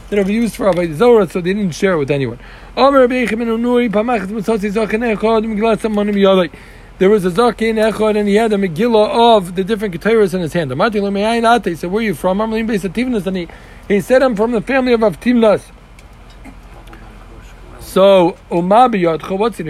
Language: English